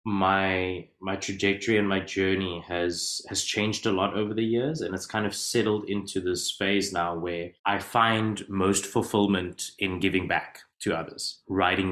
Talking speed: 170 wpm